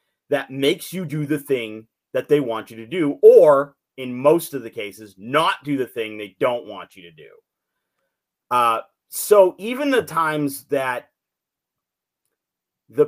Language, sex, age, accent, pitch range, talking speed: English, male, 30-49, American, 140-175 Hz, 160 wpm